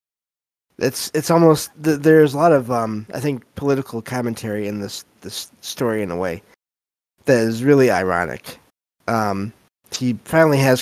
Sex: male